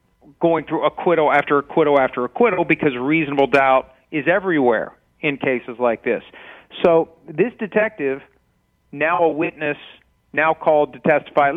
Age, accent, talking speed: 40-59, American, 140 wpm